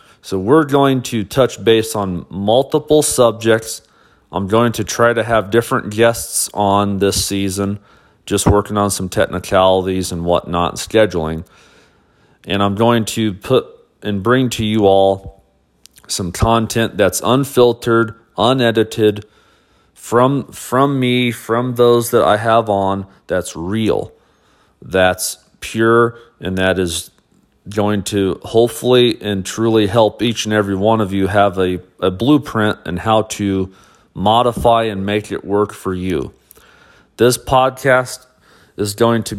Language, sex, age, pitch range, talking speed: English, male, 40-59, 95-115 Hz, 140 wpm